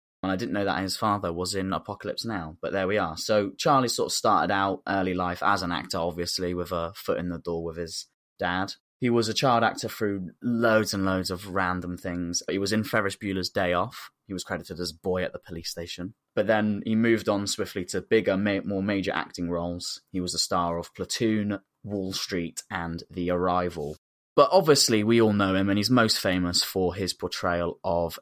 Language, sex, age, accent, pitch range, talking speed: English, male, 20-39, British, 90-105 Hz, 215 wpm